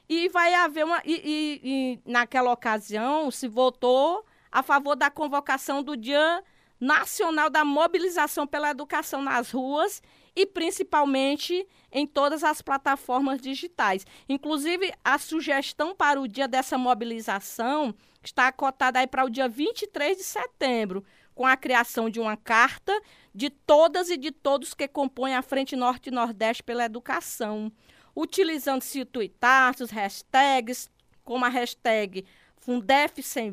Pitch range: 250-315 Hz